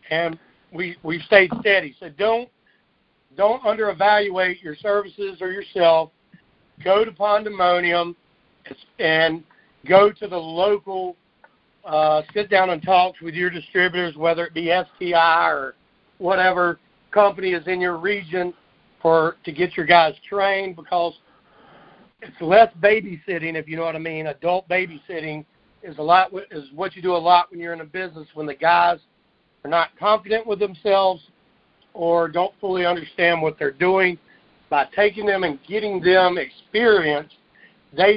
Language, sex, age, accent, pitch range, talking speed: English, male, 60-79, American, 165-195 Hz, 150 wpm